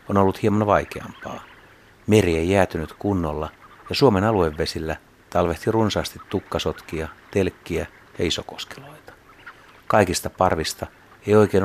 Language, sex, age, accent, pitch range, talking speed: Finnish, male, 60-79, native, 85-105 Hz, 110 wpm